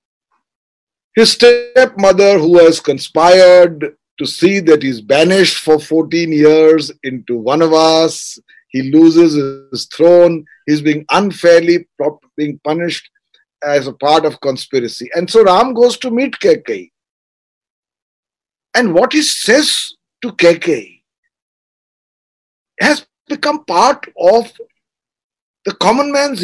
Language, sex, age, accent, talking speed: Hindi, male, 50-69, native, 115 wpm